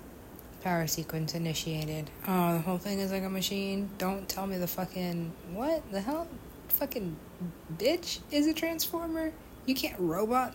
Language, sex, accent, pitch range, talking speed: English, female, American, 155-190 Hz, 155 wpm